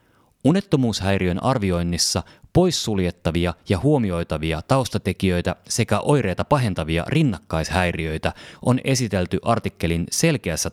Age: 30-49